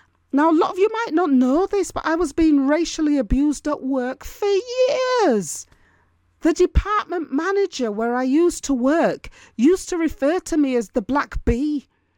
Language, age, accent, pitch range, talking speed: English, 40-59, British, 230-330 Hz, 175 wpm